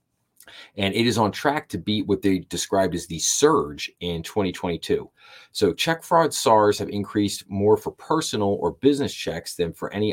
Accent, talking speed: American, 180 wpm